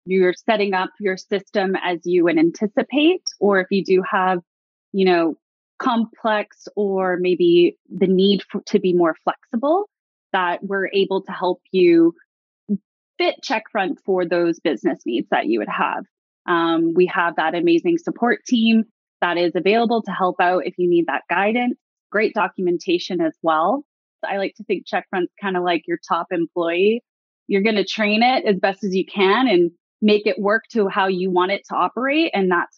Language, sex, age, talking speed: English, female, 20-39, 175 wpm